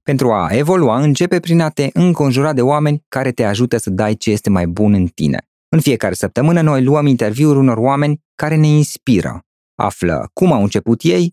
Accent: native